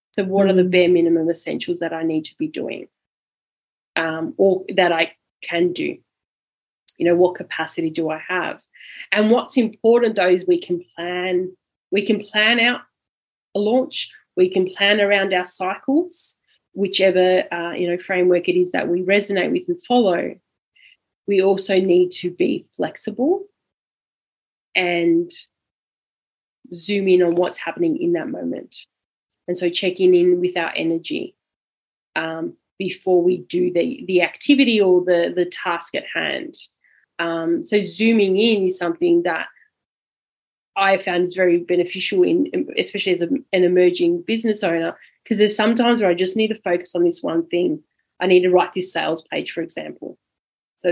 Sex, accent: female, Australian